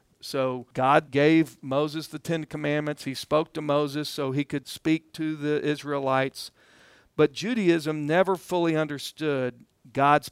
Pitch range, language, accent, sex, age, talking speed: 135-165 Hz, English, American, male, 50-69, 140 wpm